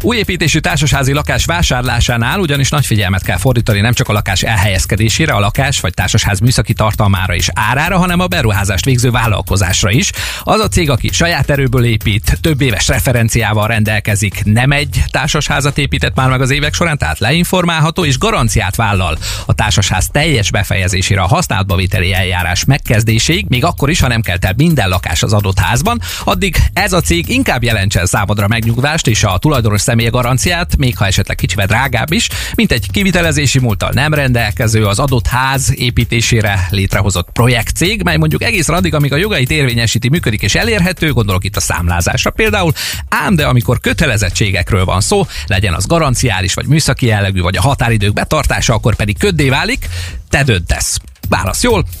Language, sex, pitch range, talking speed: Hungarian, male, 100-130 Hz, 165 wpm